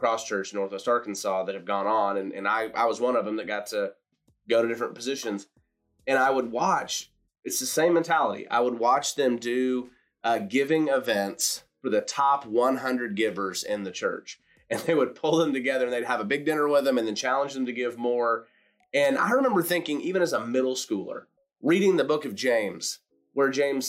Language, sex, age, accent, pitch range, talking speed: English, male, 30-49, American, 115-150 Hz, 210 wpm